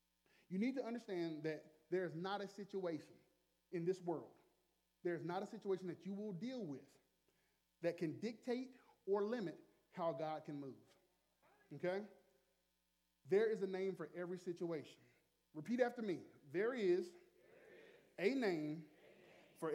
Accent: American